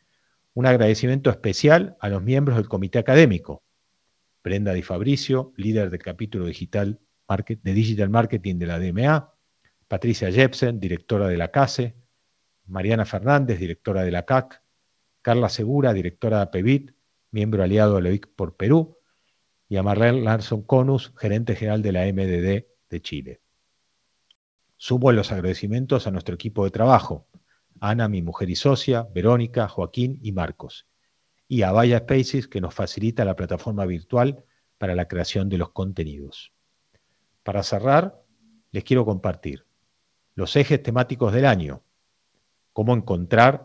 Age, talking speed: 40-59, 140 wpm